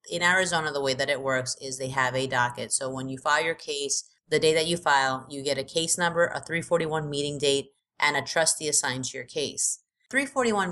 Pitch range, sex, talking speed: 130-155 Hz, female, 225 wpm